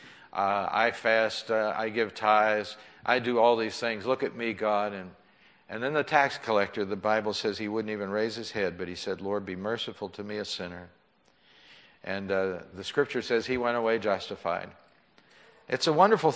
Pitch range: 100-125 Hz